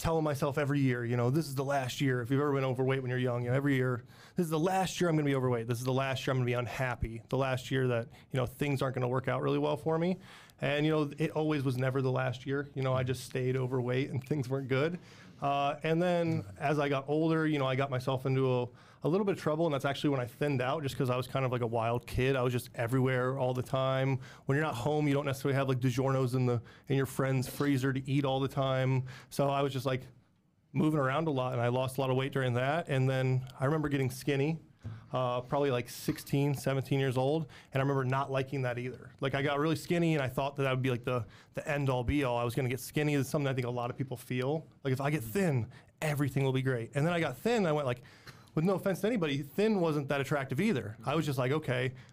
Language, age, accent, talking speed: English, 30-49, American, 285 wpm